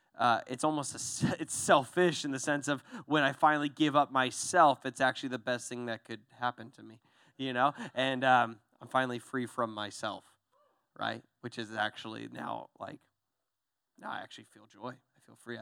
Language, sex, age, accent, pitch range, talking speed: English, male, 20-39, American, 135-205 Hz, 185 wpm